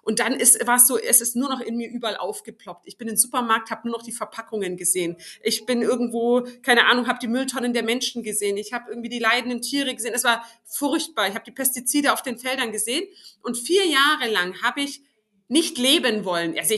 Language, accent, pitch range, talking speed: German, German, 230-290 Hz, 225 wpm